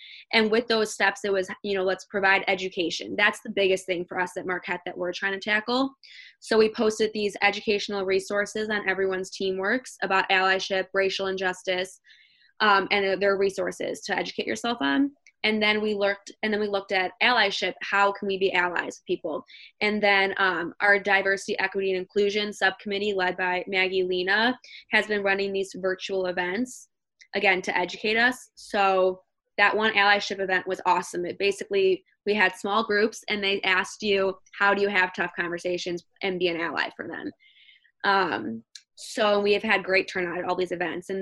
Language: English